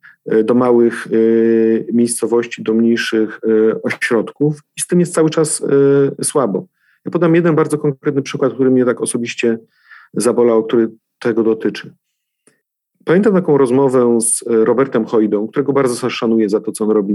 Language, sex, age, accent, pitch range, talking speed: Polish, male, 40-59, native, 110-140 Hz, 145 wpm